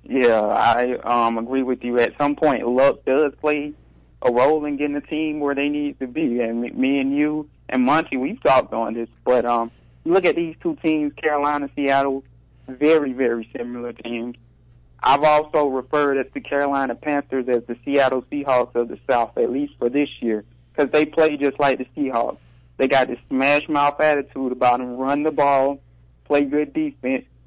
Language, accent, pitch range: English, American, 125-155 Hz